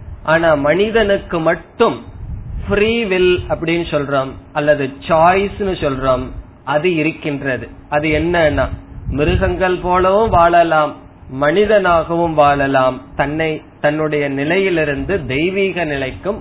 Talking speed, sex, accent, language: 40 wpm, male, native, Tamil